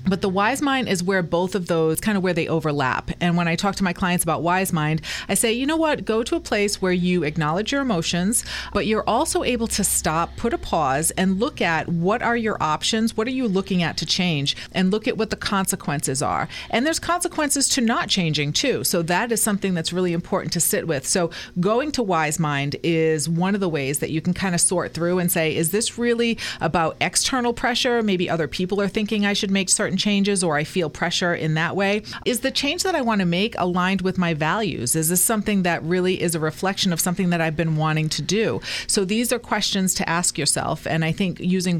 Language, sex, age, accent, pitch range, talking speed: English, female, 30-49, American, 165-215 Hz, 240 wpm